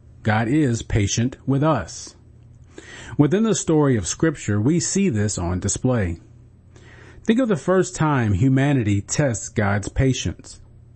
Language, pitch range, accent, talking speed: English, 105-145 Hz, American, 130 wpm